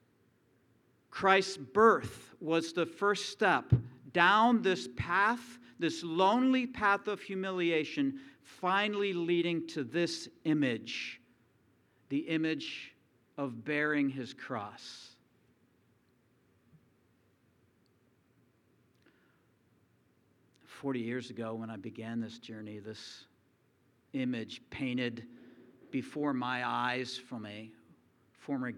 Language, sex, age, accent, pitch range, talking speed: English, male, 50-69, American, 120-175 Hz, 90 wpm